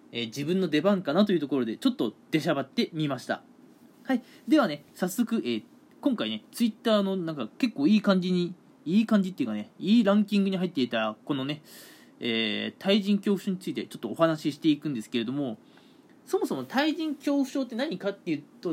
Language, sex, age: Japanese, male, 20-39